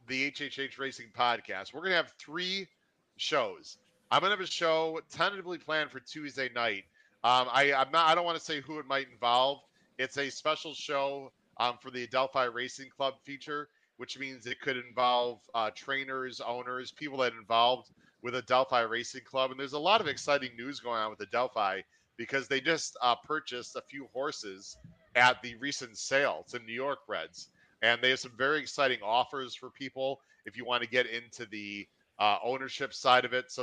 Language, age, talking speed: English, 40-59, 200 wpm